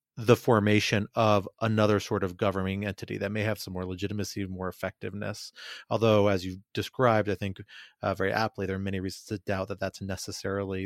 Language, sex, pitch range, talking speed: English, male, 95-115 Hz, 195 wpm